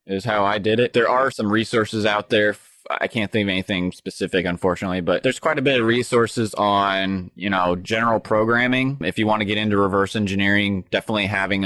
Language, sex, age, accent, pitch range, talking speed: English, male, 20-39, American, 95-110 Hz, 205 wpm